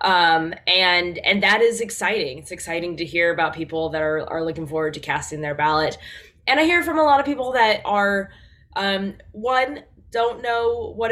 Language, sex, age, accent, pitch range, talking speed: English, female, 20-39, American, 165-205 Hz, 195 wpm